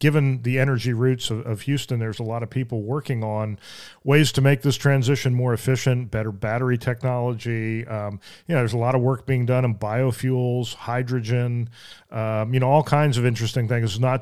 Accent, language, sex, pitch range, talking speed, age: American, English, male, 115-135 Hz, 195 wpm, 40-59